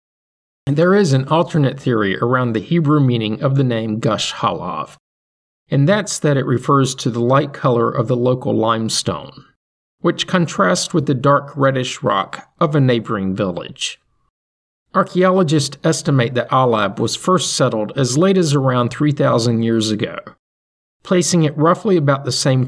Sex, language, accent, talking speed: male, English, American, 155 wpm